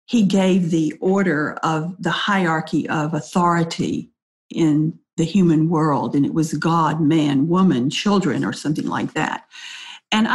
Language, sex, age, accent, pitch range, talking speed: English, female, 50-69, American, 165-210 Hz, 145 wpm